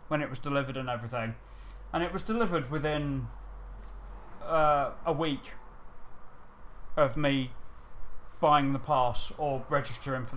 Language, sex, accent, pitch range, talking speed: English, male, British, 125-150 Hz, 125 wpm